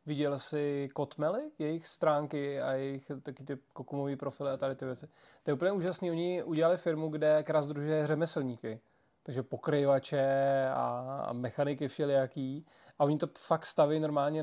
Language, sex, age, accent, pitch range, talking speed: Czech, male, 20-39, native, 140-165 Hz, 150 wpm